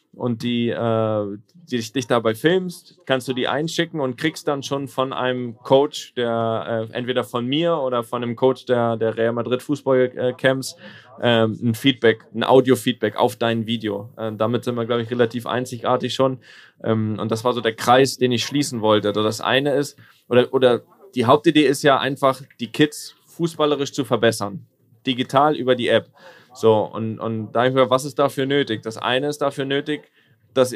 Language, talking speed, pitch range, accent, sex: German, 175 wpm, 115-145 Hz, German, male